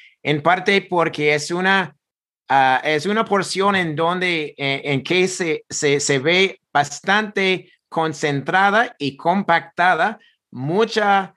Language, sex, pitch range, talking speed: English, male, 155-200 Hz, 120 wpm